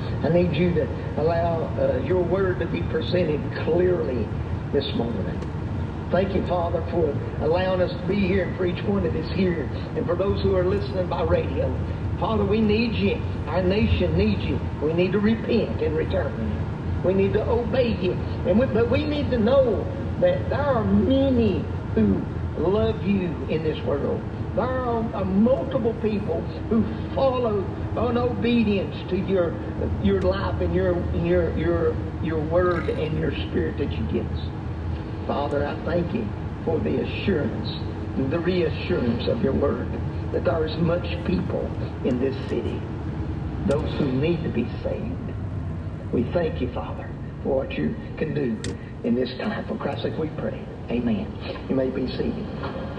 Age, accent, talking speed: 50-69, American, 170 wpm